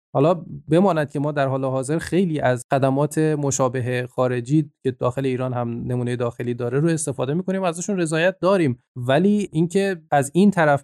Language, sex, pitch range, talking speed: Persian, male, 125-155 Hz, 170 wpm